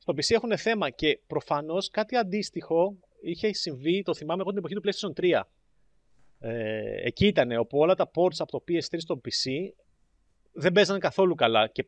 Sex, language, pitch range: male, Greek, 140-205 Hz